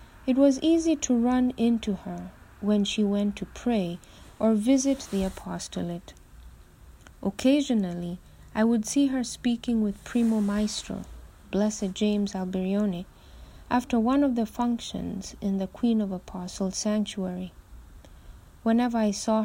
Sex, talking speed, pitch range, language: female, 130 wpm, 190-240 Hz, English